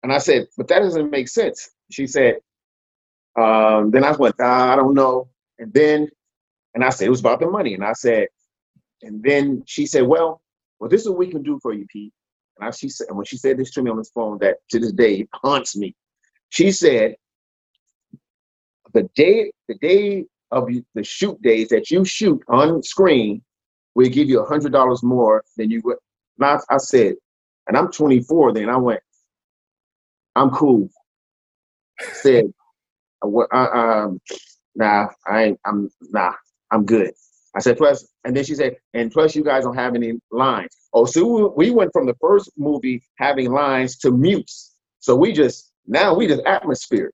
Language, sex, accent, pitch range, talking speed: English, male, American, 115-190 Hz, 185 wpm